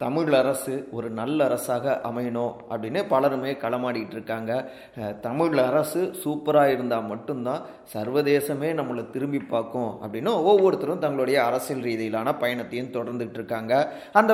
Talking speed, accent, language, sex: 115 wpm, native, Tamil, male